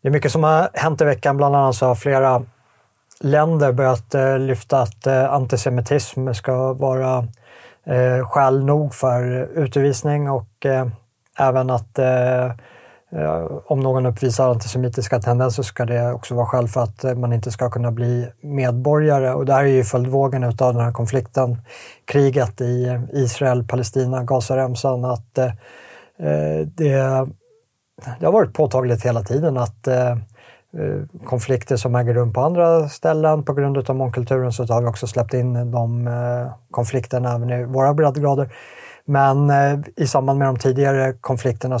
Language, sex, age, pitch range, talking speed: Swedish, male, 30-49, 120-135 Hz, 140 wpm